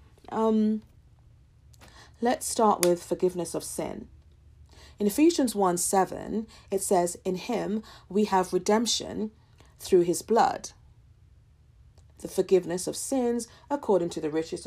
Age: 40-59